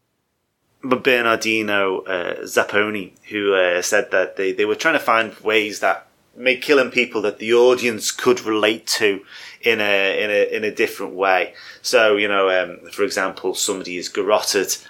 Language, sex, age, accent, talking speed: English, male, 30-49, British, 170 wpm